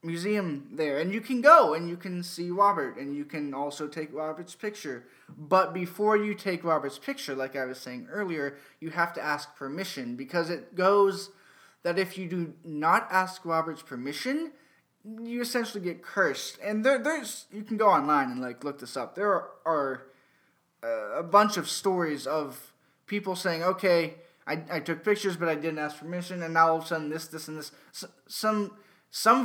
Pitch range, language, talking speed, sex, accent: 150-195 Hz, English, 190 wpm, male, American